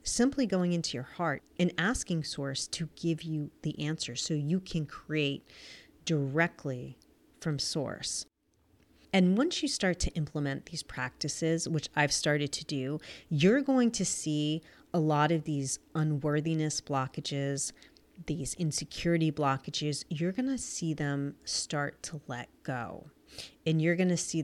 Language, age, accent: English, 30-49, American